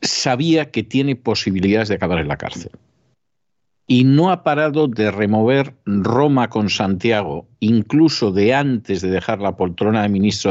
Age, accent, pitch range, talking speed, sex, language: 50-69, Spanish, 100-130 Hz, 155 wpm, male, Spanish